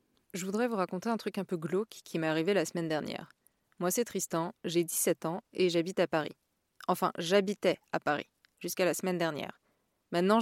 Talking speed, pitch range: 195 wpm, 170-210 Hz